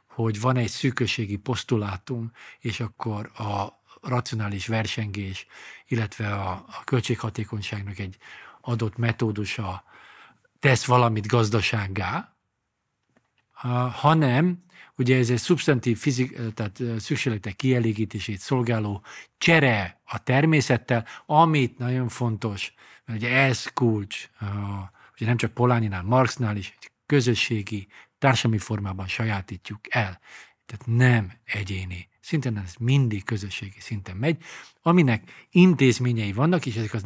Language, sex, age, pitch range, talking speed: Hungarian, male, 50-69, 105-130 Hz, 110 wpm